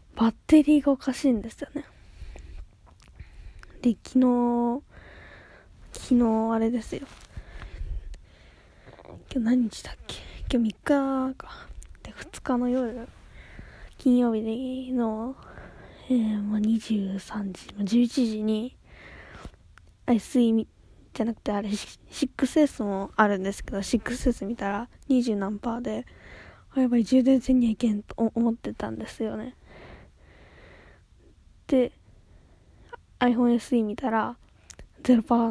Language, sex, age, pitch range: Japanese, female, 20-39, 210-250 Hz